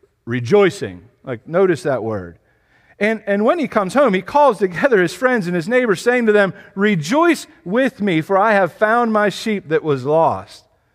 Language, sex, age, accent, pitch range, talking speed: English, male, 40-59, American, 145-235 Hz, 185 wpm